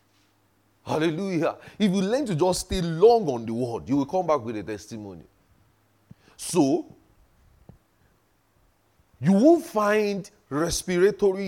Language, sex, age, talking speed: English, male, 30-49, 120 wpm